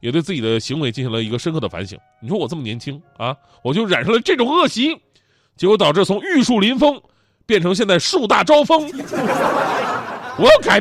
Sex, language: male, Chinese